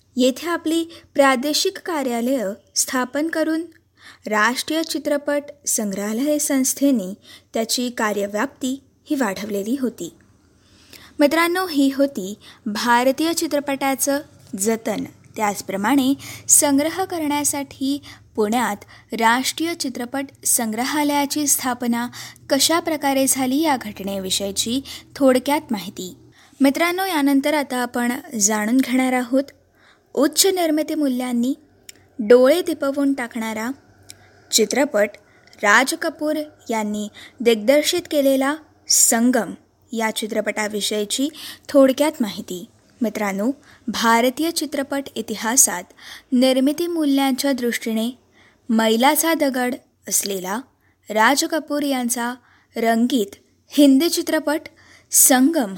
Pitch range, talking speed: 225-295 Hz, 80 wpm